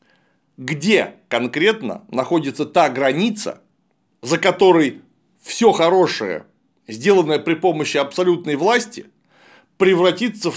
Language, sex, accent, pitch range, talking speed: Russian, male, native, 155-210 Hz, 90 wpm